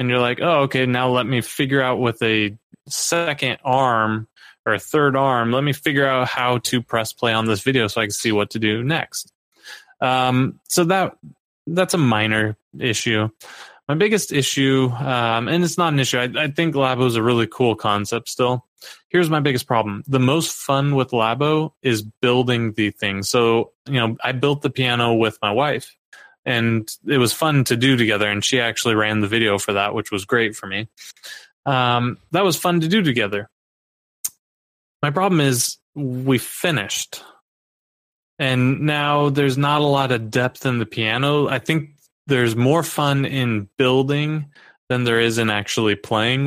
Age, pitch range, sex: 20-39, 115-140 Hz, male